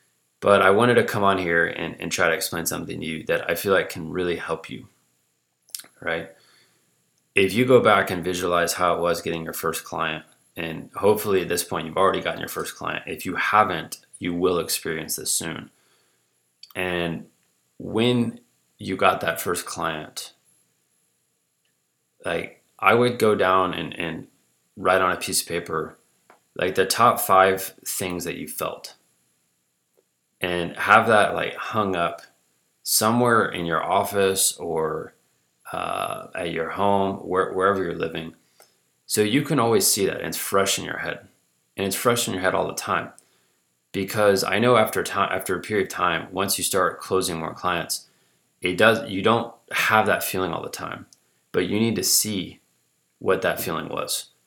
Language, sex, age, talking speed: English, male, 20-39, 175 wpm